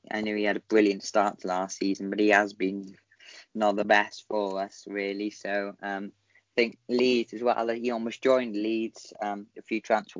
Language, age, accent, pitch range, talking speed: English, 20-39, British, 105-120 Hz, 205 wpm